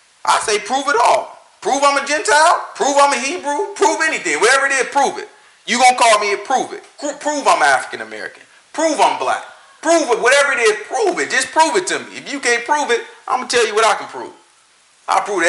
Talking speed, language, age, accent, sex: 250 wpm, English, 40-59, American, male